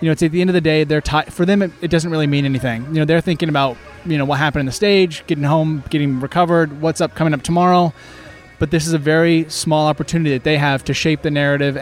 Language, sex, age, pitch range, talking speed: English, male, 20-39, 140-160 Hz, 275 wpm